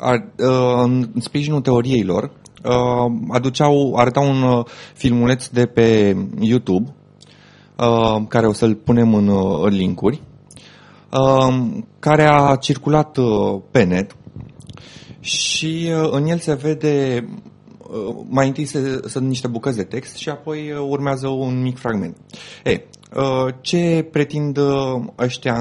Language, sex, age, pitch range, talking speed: Romanian, male, 30-49, 115-140 Hz, 105 wpm